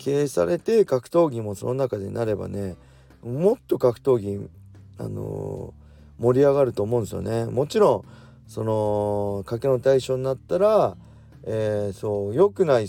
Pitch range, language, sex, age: 100-130 Hz, Japanese, male, 40-59